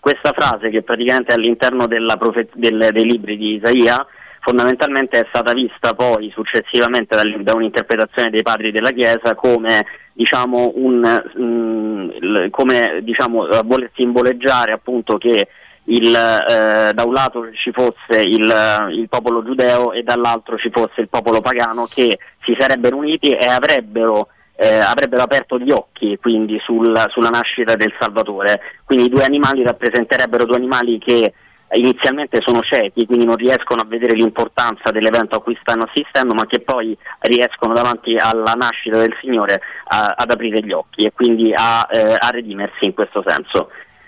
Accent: native